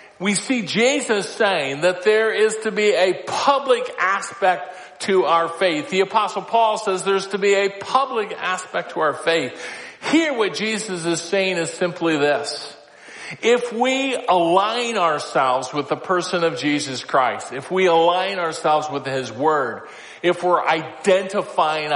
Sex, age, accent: male, 50-69, American